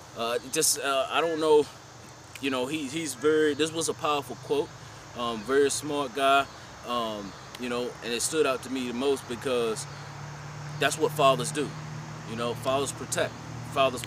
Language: English